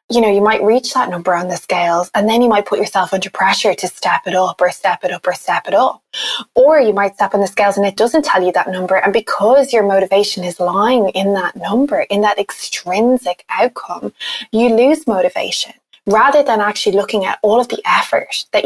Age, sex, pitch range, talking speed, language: 20-39, female, 185-225 Hz, 225 wpm, English